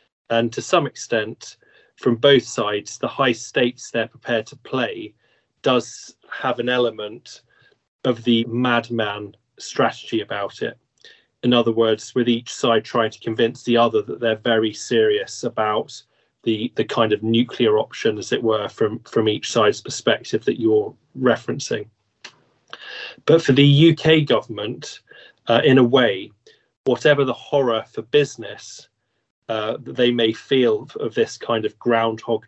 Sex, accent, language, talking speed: male, British, English, 150 wpm